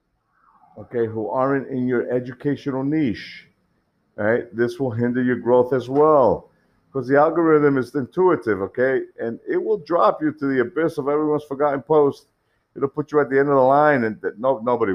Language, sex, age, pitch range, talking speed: English, male, 50-69, 120-150 Hz, 180 wpm